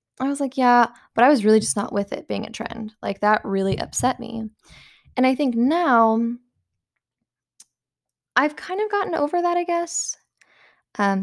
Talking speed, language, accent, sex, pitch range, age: 175 wpm, English, American, female, 200-260 Hz, 10-29